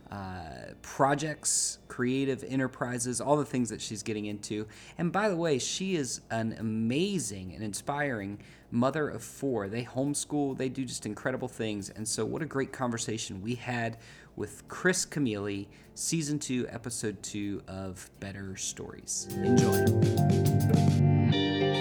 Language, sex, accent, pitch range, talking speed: English, male, American, 110-145 Hz, 140 wpm